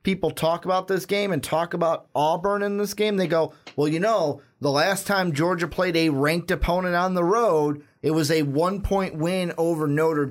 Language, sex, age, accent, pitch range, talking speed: English, male, 30-49, American, 135-180 Hz, 205 wpm